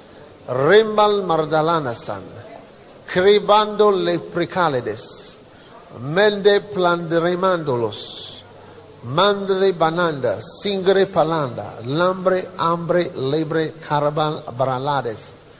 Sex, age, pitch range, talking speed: male, 50-69, 150-185 Hz, 60 wpm